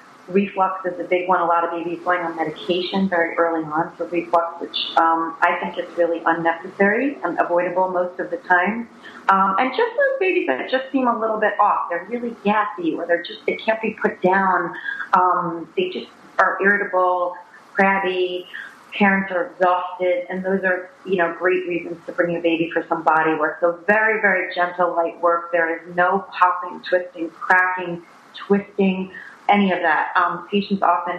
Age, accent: 40-59, American